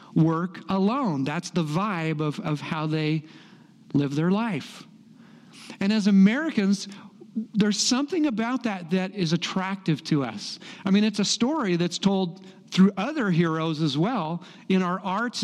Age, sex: 50-69, male